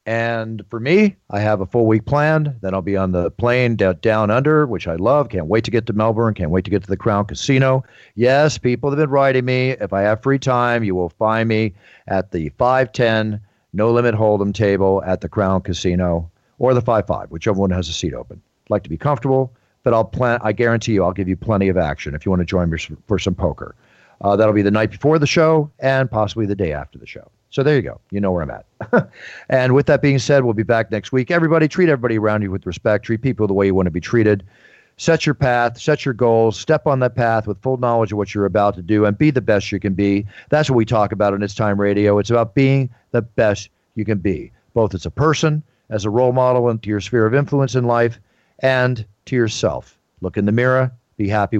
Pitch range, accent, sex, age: 100-130 Hz, American, male, 40-59